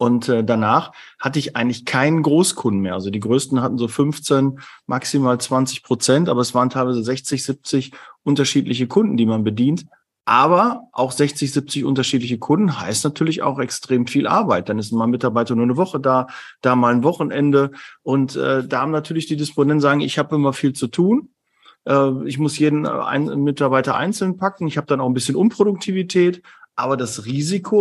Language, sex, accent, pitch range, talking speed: German, male, German, 125-150 Hz, 175 wpm